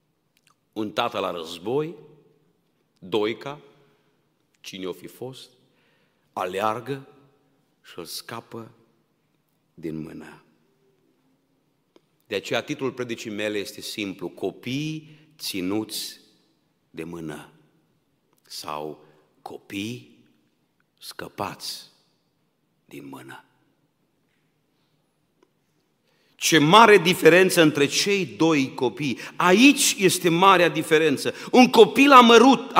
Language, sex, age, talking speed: Romanian, male, 50-69, 80 wpm